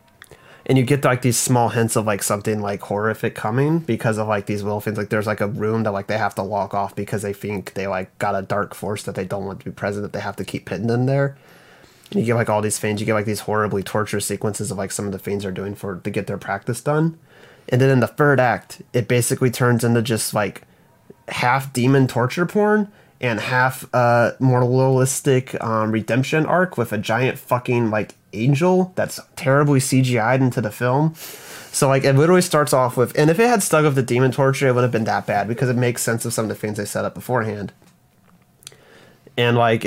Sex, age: male, 30-49